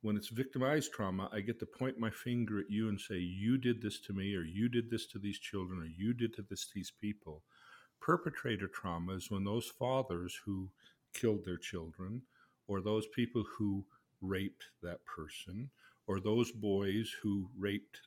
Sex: male